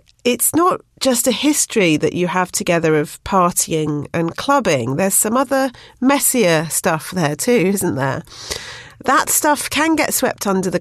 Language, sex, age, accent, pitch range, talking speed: English, female, 40-59, British, 170-245 Hz, 160 wpm